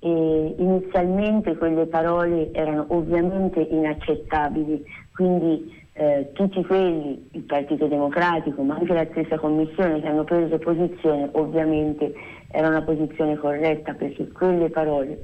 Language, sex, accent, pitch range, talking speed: Italian, female, native, 145-170 Hz, 120 wpm